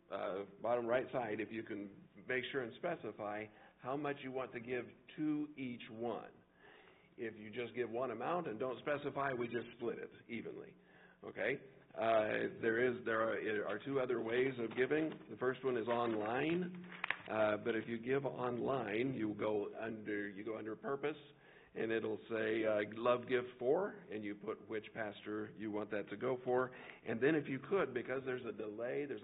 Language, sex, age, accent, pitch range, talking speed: English, male, 50-69, American, 110-130 Hz, 190 wpm